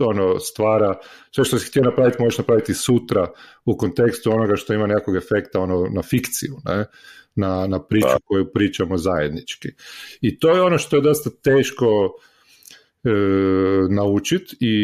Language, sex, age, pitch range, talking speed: Croatian, male, 40-59, 95-125 Hz, 155 wpm